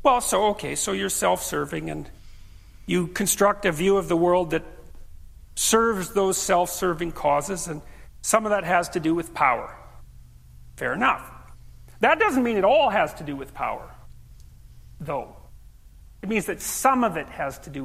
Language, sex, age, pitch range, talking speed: English, male, 40-59, 140-220 Hz, 170 wpm